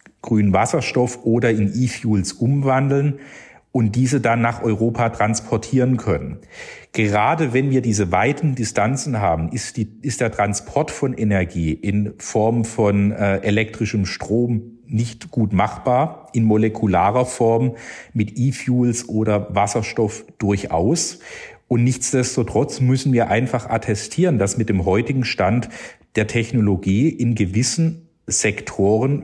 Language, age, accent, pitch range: German, 50-69, German, 105-130 Hz